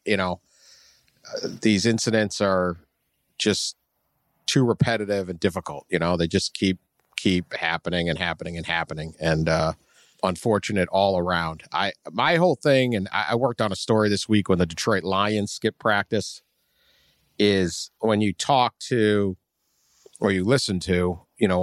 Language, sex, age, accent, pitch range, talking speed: English, male, 50-69, American, 95-110 Hz, 160 wpm